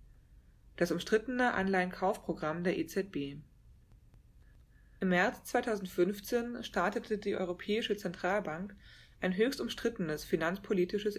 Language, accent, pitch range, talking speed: German, German, 165-210 Hz, 85 wpm